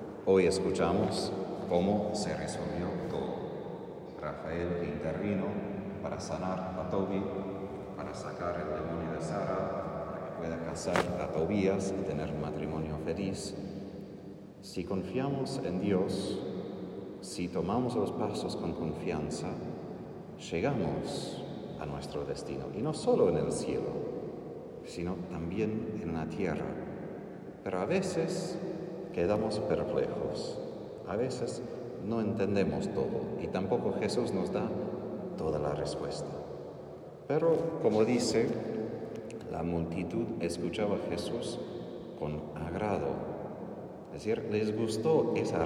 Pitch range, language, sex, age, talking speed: 85-100 Hz, Spanish, male, 40-59, 115 wpm